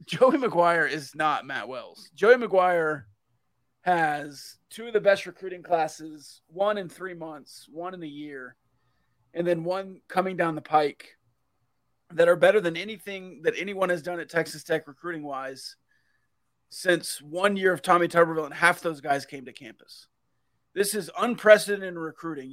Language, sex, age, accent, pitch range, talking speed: English, male, 30-49, American, 150-190 Hz, 160 wpm